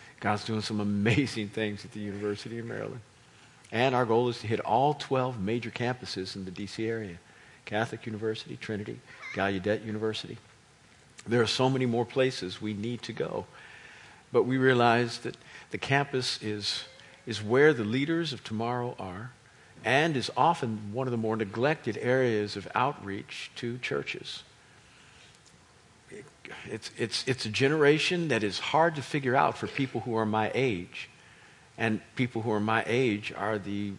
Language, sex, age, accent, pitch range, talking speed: English, male, 50-69, American, 105-130 Hz, 160 wpm